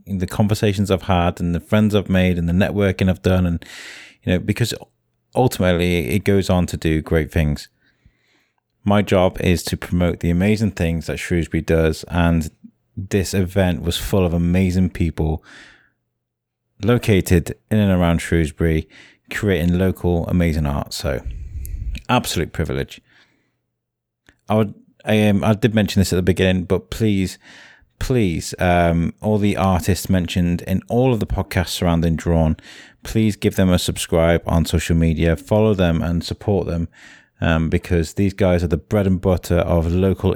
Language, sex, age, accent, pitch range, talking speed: English, male, 30-49, British, 85-105 Hz, 160 wpm